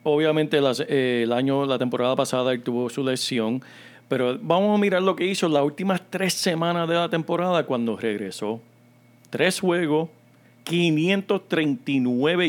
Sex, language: male, Spanish